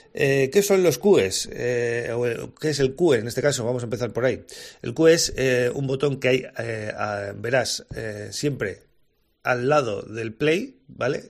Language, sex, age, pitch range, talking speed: Spanish, male, 30-49, 120-160 Hz, 190 wpm